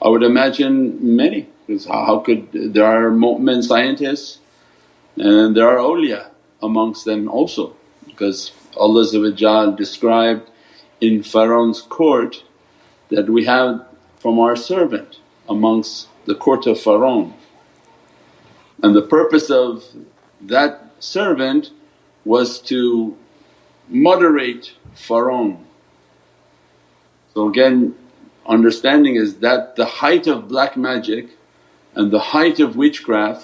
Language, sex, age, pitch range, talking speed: English, male, 50-69, 105-145 Hz, 110 wpm